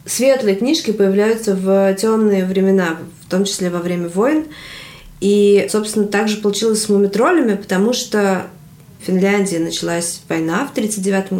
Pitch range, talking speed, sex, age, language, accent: 180-210 Hz, 135 wpm, female, 20-39, Russian, native